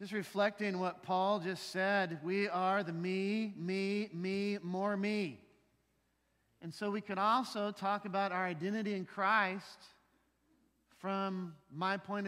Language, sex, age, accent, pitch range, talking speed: English, male, 40-59, American, 150-210 Hz, 135 wpm